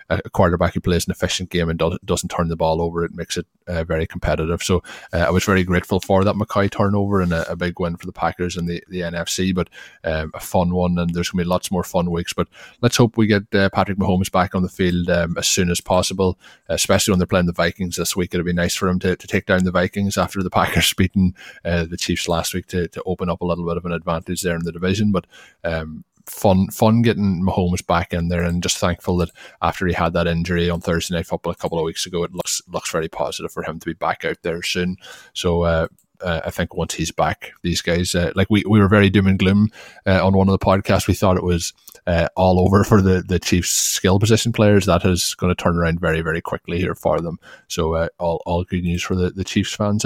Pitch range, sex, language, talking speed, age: 85-95 Hz, male, English, 260 wpm, 20-39